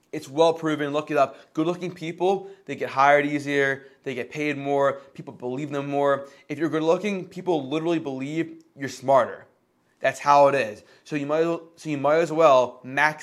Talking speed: 185 wpm